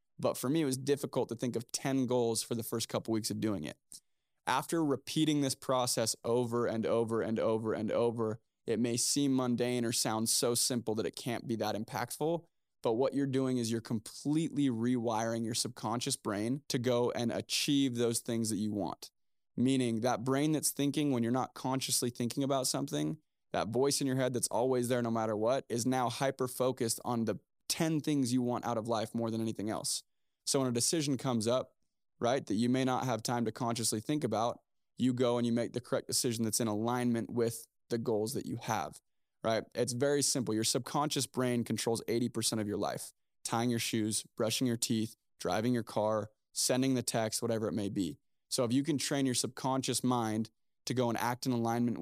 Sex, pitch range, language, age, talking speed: male, 115-130 Hz, English, 20-39, 205 wpm